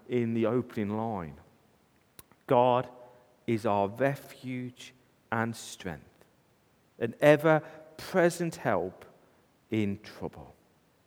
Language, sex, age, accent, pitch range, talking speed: English, male, 40-59, British, 125-160 Hz, 80 wpm